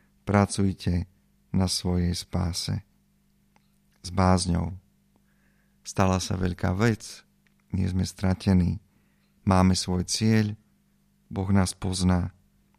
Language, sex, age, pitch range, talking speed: Slovak, male, 50-69, 95-105 Hz, 90 wpm